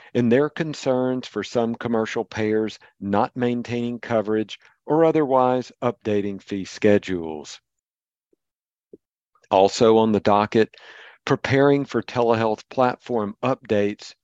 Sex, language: male, English